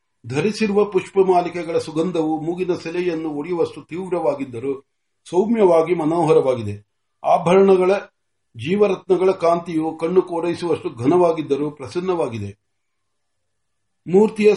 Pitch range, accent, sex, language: 145-190 Hz, native, male, Marathi